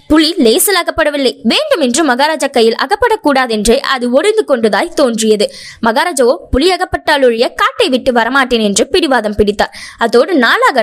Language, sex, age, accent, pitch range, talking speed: Tamil, female, 20-39, native, 225-320 Hz, 95 wpm